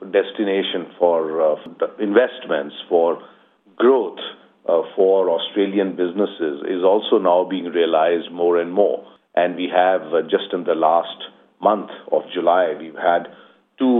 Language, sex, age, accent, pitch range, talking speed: Gujarati, male, 50-69, native, 85-110 Hz, 140 wpm